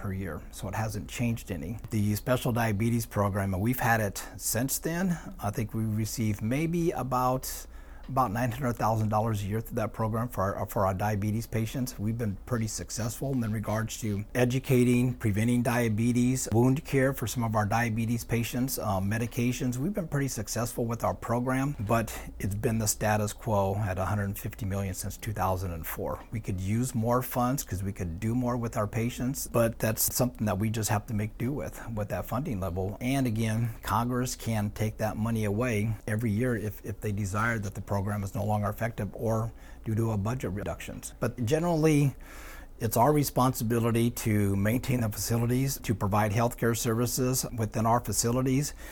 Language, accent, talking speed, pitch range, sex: English, American, 180 wpm, 105-125 Hz, male